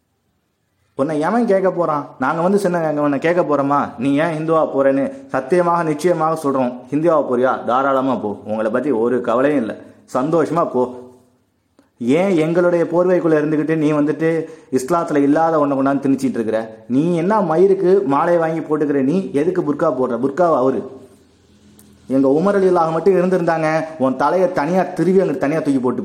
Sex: male